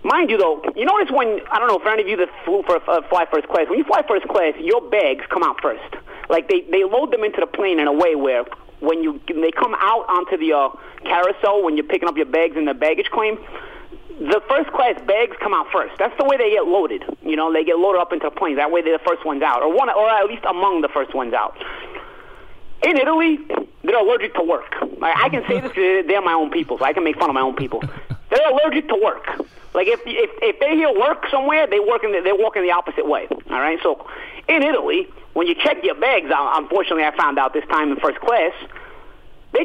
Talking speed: 245 wpm